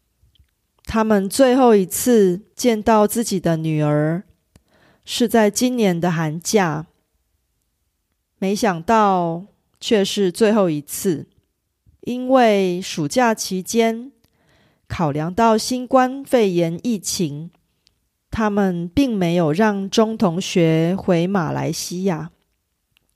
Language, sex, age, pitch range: Korean, female, 30-49, 170-225 Hz